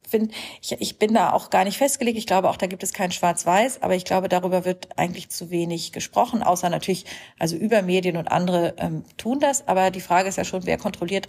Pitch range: 175-215 Hz